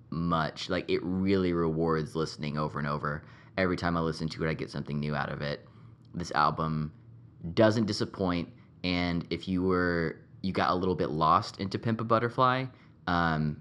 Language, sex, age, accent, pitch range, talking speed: English, male, 20-39, American, 75-95 Hz, 180 wpm